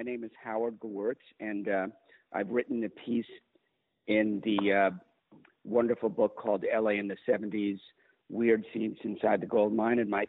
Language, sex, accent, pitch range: English, male, American, 105-120 Hz